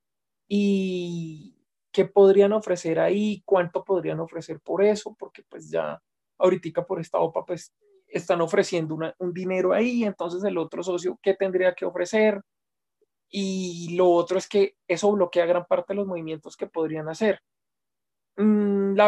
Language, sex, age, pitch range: Spanish, male, 20-39, 175-205 Hz